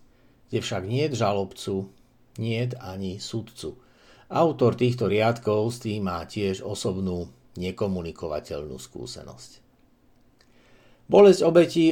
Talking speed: 95 wpm